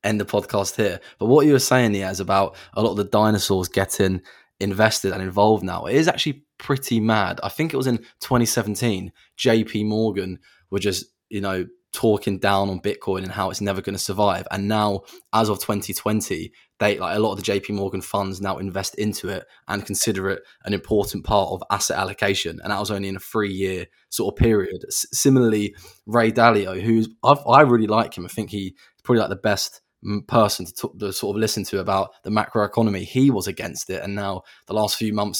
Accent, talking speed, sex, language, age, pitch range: British, 215 wpm, male, English, 20-39, 100-115 Hz